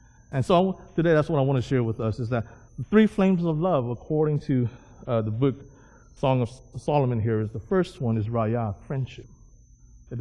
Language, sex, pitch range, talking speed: English, male, 105-130 Hz, 205 wpm